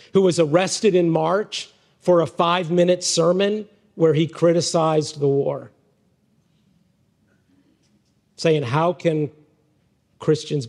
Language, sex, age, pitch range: English, male, 50-69, 135-160 Hz